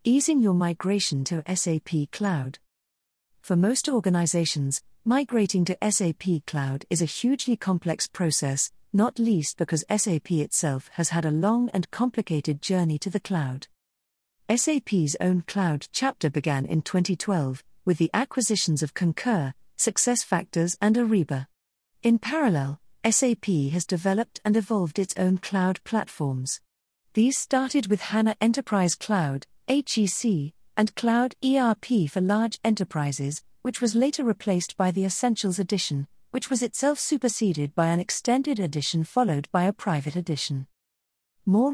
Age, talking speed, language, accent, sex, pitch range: 50-69, 135 wpm, English, British, female, 155-220 Hz